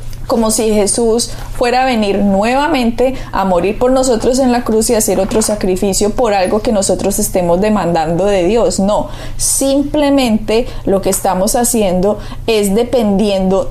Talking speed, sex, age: 150 wpm, female, 20-39